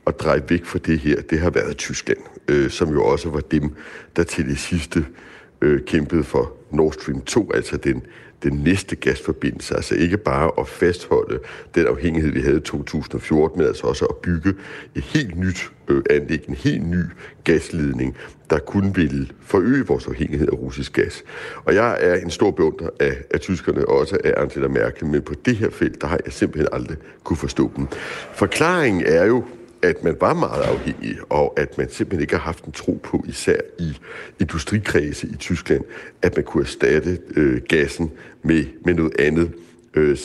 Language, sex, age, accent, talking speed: Danish, male, 60-79, native, 185 wpm